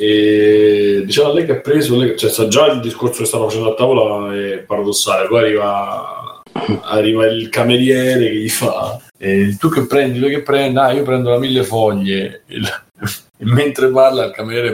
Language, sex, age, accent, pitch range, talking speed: Italian, male, 20-39, native, 105-125 Hz, 180 wpm